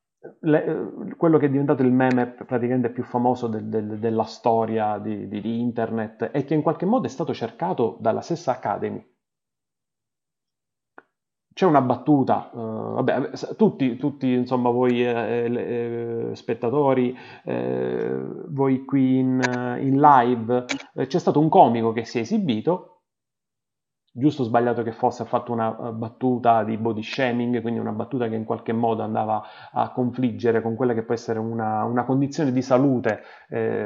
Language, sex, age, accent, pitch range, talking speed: Italian, male, 30-49, native, 115-135 Hz, 160 wpm